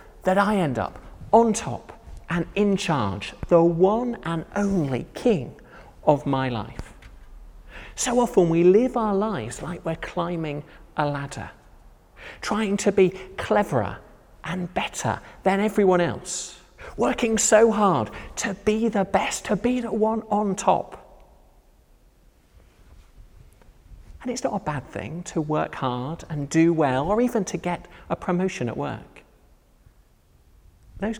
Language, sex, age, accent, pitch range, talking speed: English, male, 40-59, British, 120-195 Hz, 135 wpm